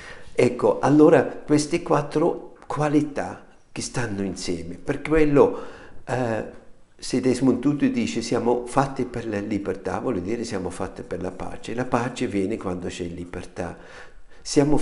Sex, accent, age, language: male, native, 50-69, Italian